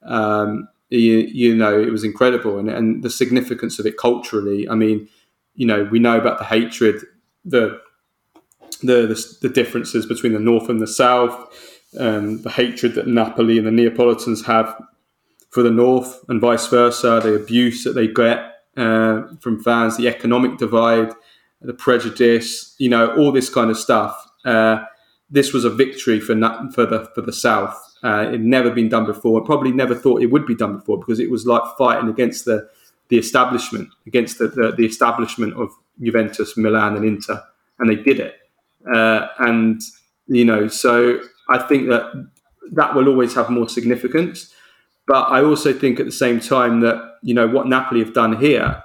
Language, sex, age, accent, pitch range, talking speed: English, male, 20-39, British, 110-125 Hz, 185 wpm